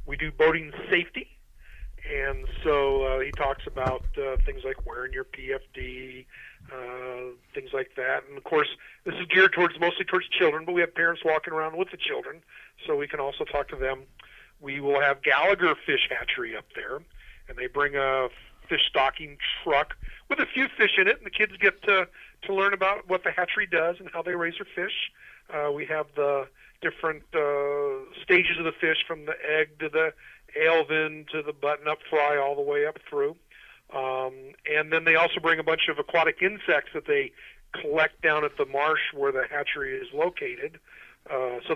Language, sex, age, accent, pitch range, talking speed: English, male, 50-69, American, 145-210 Hz, 195 wpm